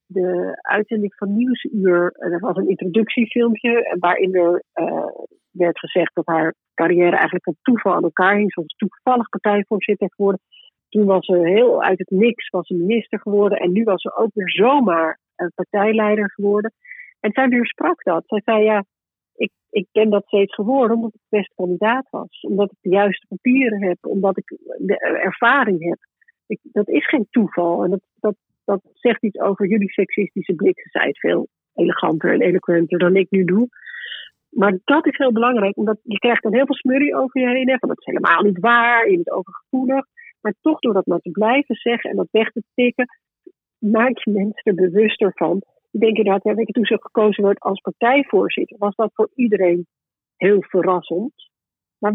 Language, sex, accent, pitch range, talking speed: Dutch, female, Dutch, 190-240 Hz, 190 wpm